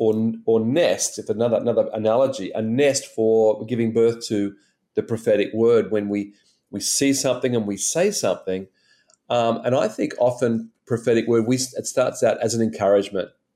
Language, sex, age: Japanese, male, 40-59